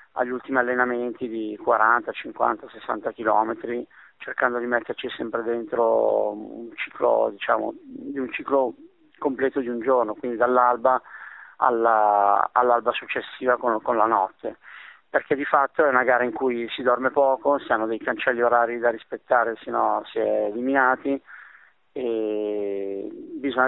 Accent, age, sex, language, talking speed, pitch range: native, 30-49, male, Italian, 145 wpm, 120-145 Hz